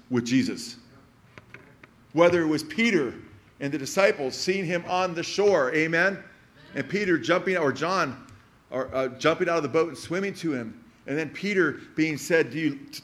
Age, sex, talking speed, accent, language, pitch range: 40-59, male, 175 wpm, American, English, 140-185 Hz